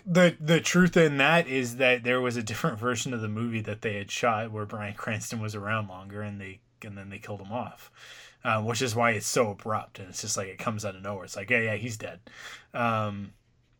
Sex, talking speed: male, 245 wpm